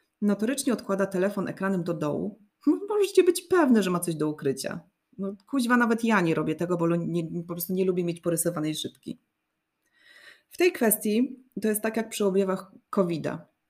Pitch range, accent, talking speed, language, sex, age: 170-225 Hz, native, 185 wpm, Polish, female, 30-49